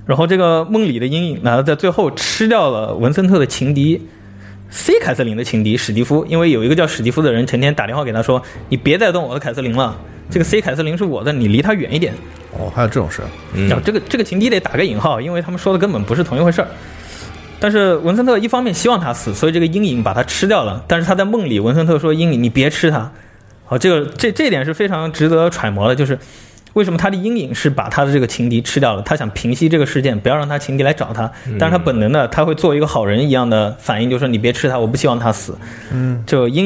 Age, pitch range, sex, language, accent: 20-39, 115-165 Hz, male, Chinese, native